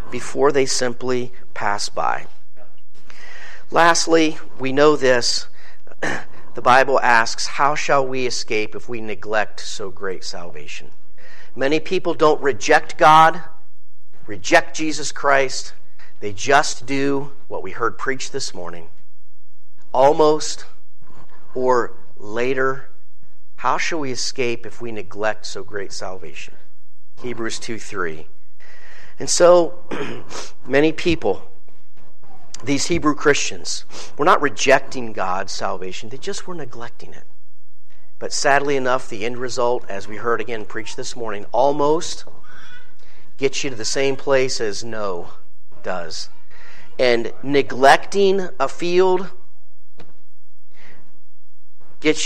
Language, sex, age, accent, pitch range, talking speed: English, male, 50-69, American, 120-150 Hz, 115 wpm